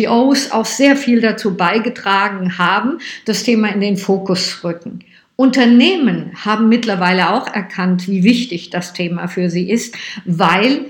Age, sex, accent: 50-69, female, German